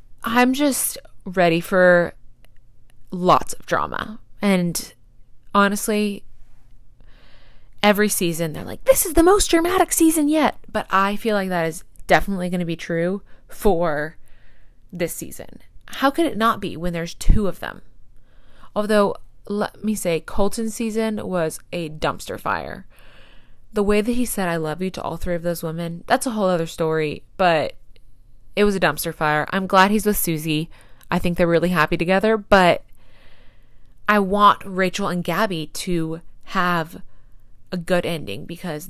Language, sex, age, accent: English, female, 20-39, American